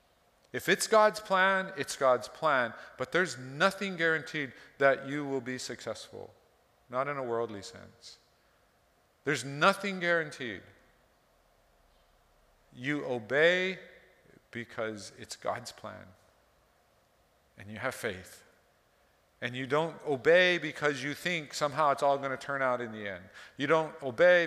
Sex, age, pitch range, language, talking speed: male, 40-59, 125-160 Hz, English, 130 wpm